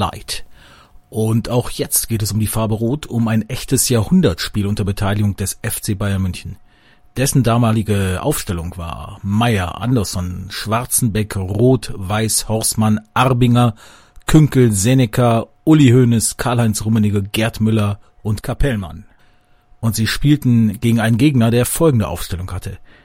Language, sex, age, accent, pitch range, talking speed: German, male, 40-59, German, 105-120 Hz, 130 wpm